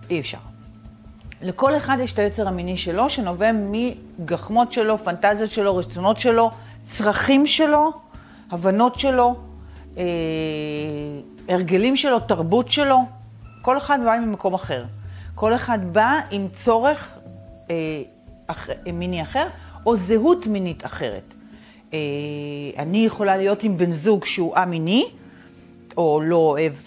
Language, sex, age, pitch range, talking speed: Hebrew, female, 40-59, 150-240 Hz, 125 wpm